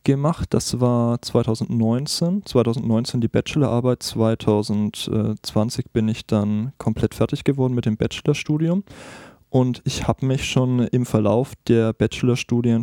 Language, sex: German, male